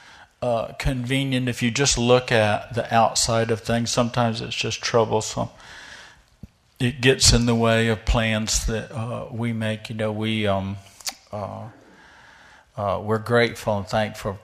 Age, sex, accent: 50-69, male, American